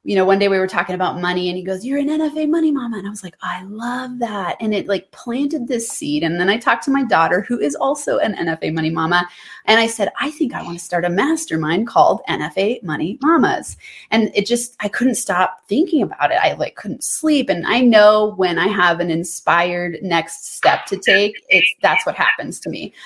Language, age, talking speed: English, 20-39, 235 wpm